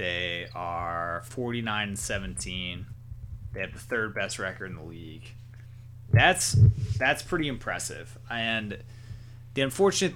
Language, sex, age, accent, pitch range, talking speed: English, male, 30-49, American, 105-120 Hz, 125 wpm